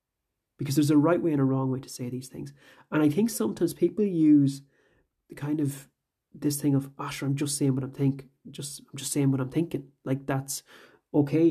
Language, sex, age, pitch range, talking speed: English, male, 30-49, 135-155 Hz, 220 wpm